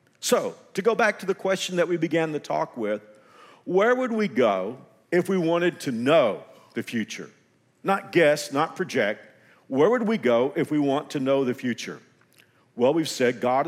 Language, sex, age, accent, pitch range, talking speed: English, male, 50-69, American, 135-200 Hz, 190 wpm